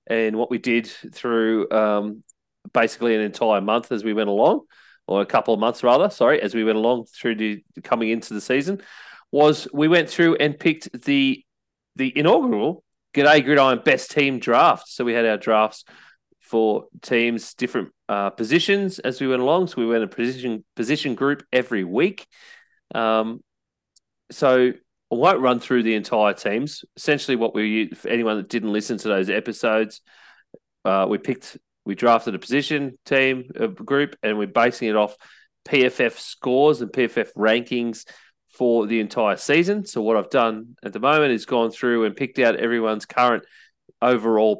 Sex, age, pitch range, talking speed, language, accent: male, 30-49, 110-135 Hz, 170 wpm, English, Australian